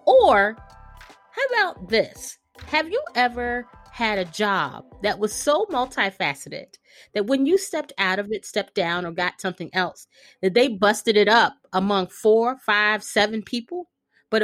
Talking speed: 160 wpm